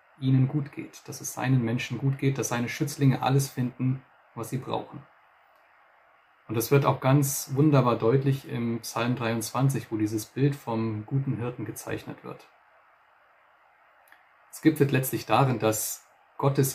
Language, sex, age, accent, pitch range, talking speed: German, male, 30-49, German, 110-135 Hz, 150 wpm